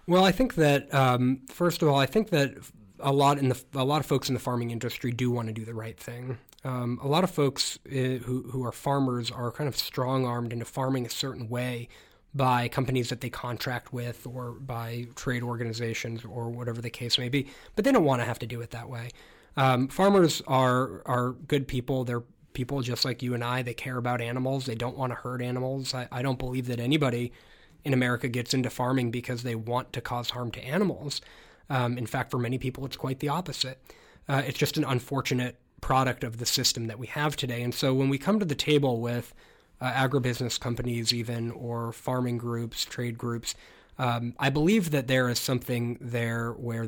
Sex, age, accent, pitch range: male, 20-39, American, 120-135 Hz